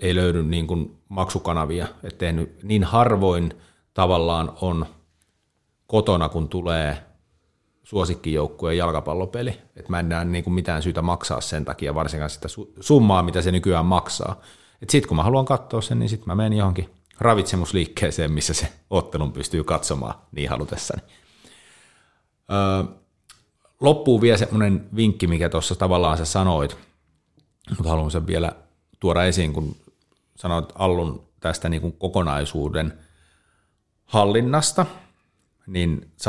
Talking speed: 130 wpm